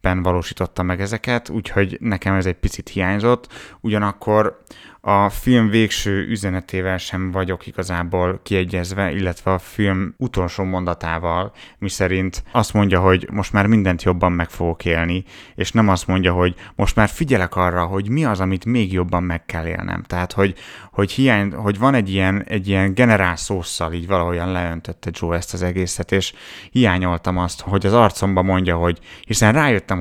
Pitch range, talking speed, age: 90-100 Hz, 165 wpm, 30-49